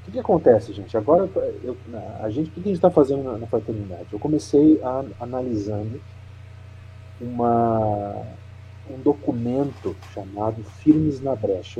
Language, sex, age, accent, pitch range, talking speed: Portuguese, male, 40-59, Brazilian, 100-130 Hz, 110 wpm